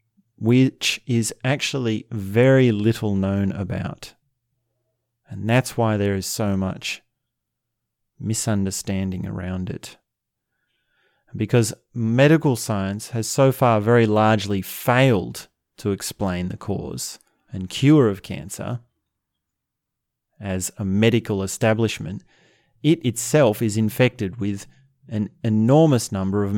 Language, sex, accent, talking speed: English, male, Australian, 105 wpm